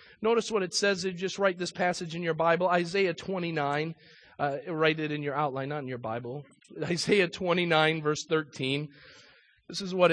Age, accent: 40-59, American